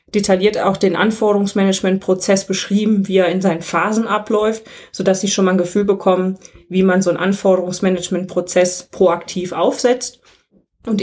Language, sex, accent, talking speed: German, female, German, 145 wpm